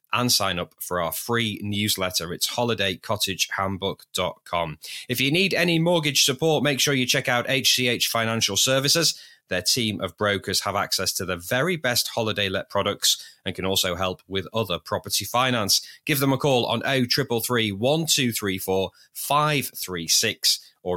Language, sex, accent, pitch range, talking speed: English, male, British, 95-135 Hz, 145 wpm